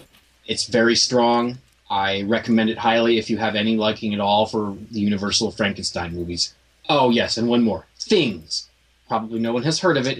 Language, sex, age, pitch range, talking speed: English, male, 30-49, 105-125 Hz, 190 wpm